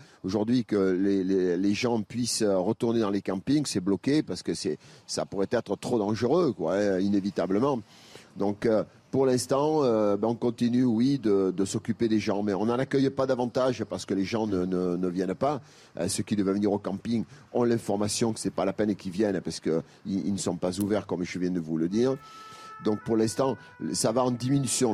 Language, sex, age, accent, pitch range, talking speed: French, male, 40-59, French, 100-120 Hz, 220 wpm